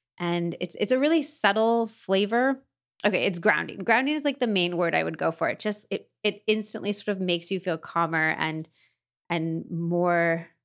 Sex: female